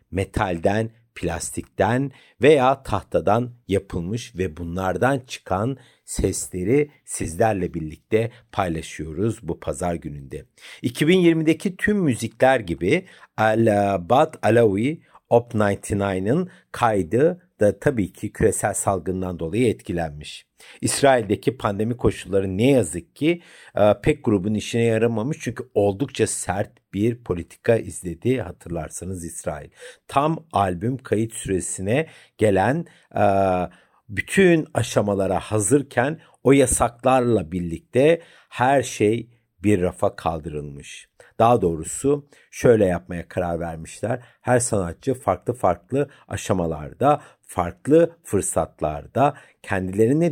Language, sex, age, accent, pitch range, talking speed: Turkish, male, 60-79, native, 95-130 Hz, 95 wpm